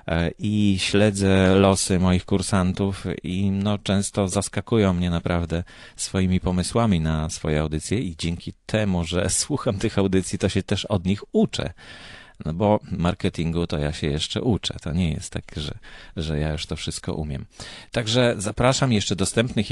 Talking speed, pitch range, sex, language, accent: 160 wpm, 85-105 Hz, male, Polish, native